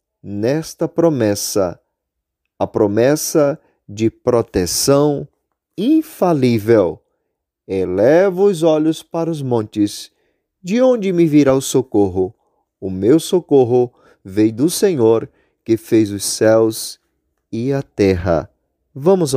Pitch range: 105-150 Hz